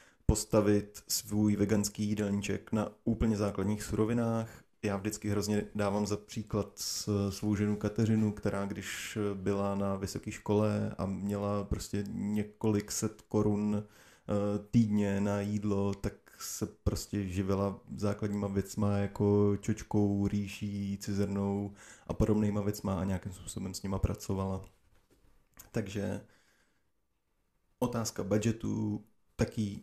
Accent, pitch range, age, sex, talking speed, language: native, 100-110 Hz, 20-39, male, 110 wpm, Czech